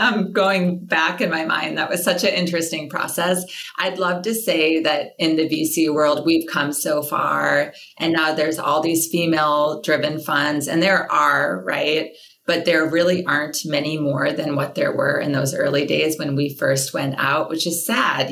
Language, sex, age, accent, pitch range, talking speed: English, female, 20-39, American, 150-180 Hz, 195 wpm